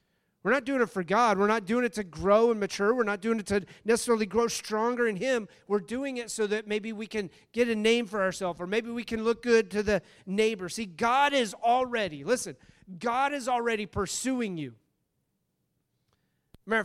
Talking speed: 205 wpm